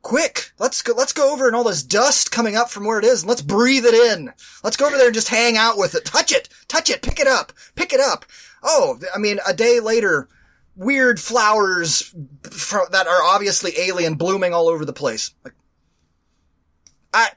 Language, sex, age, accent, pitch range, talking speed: English, male, 30-49, American, 175-235 Hz, 205 wpm